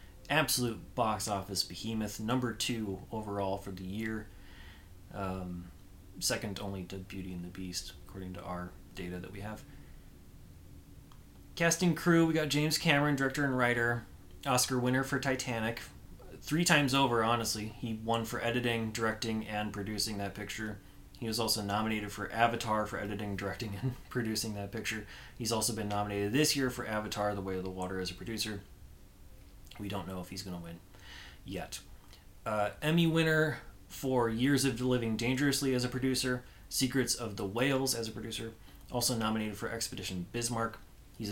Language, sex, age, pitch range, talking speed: English, male, 20-39, 95-120 Hz, 165 wpm